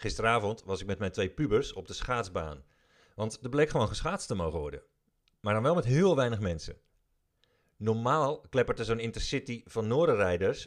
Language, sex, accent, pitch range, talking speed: Dutch, male, Dutch, 100-160 Hz, 175 wpm